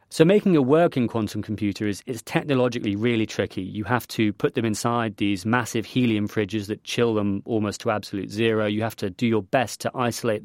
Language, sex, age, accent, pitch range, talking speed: English, male, 30-49, British, 105-120 Hz, 205 wpm